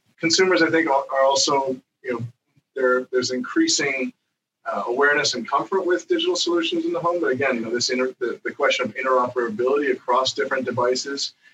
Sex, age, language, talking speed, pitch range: male, 30-49, English, 175 wpm, 115-140 Hz